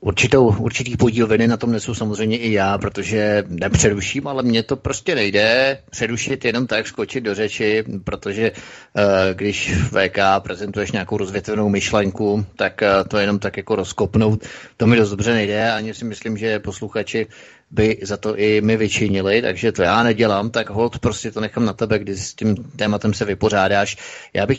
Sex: male